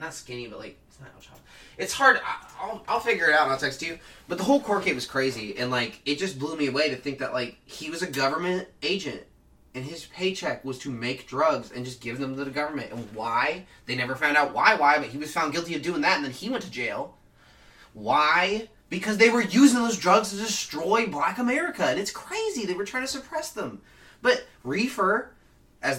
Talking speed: 230 wpm